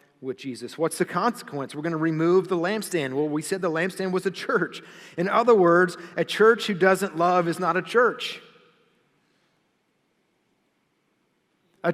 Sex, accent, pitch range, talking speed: male, American, 150-200 Hz, 160 wpm